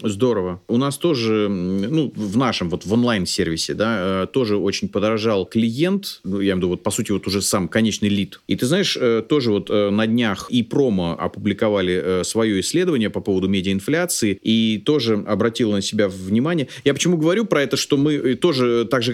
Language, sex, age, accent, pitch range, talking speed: Russian, male, 30-49, native, 100-140 Hz, 195 wpm